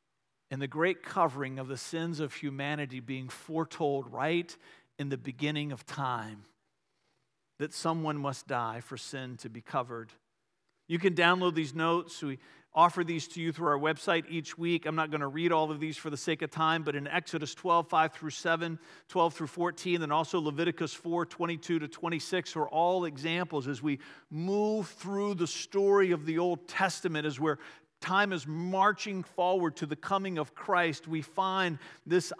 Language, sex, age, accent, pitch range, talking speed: English, male, 50-69, American, 160-205 Hz, 180 wpm